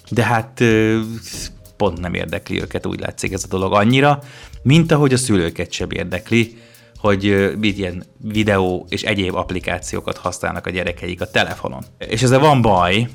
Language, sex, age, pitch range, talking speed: Hungarian, male, 30-49, 95-115 Hz, 150 wpm